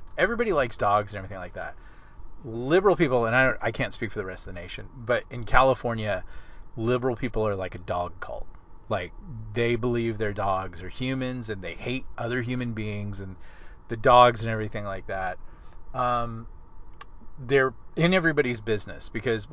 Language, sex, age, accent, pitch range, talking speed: English, male, 30-49, American, 95-125 Hz, 170 wpm